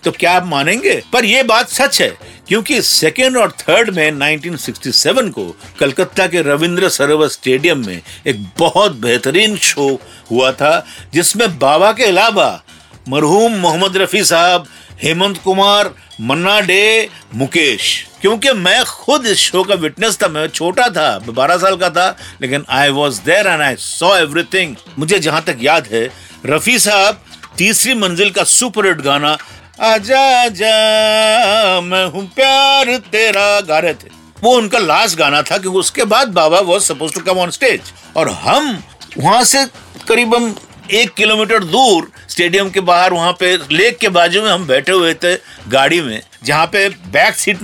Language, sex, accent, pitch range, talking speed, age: Hindi, male, native, 155-215 Hz, 150 wpm, 50-69